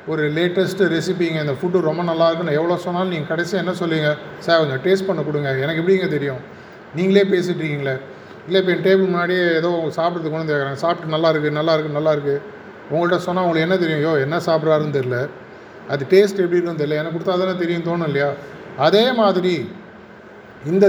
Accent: native